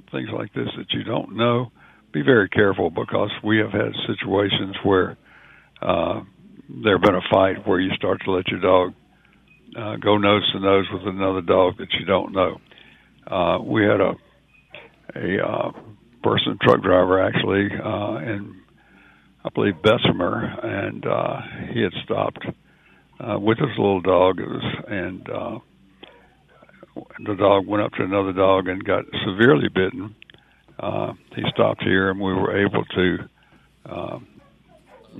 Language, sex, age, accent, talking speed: English, male, 60-79, American, 150 wpm